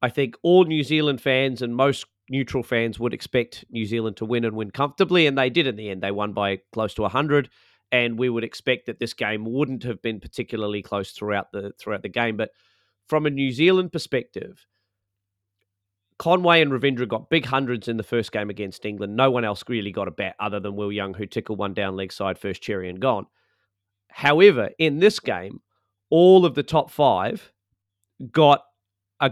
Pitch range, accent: 105-140 Hz, Australian